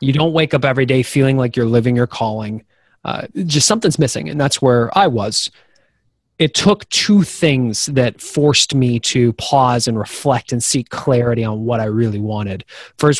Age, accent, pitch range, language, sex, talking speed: 30-49, American, 115-135 Hz, English, male, 185 wpm